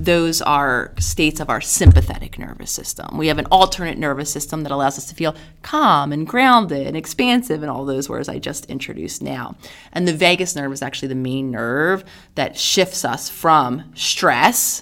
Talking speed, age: 185 wpm, 30-49